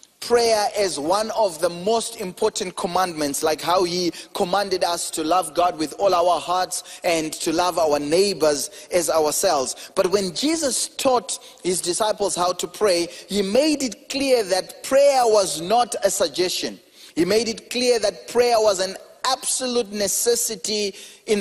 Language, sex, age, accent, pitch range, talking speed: English, male, 30-49, South African, 195-255 Hz, 160 wpm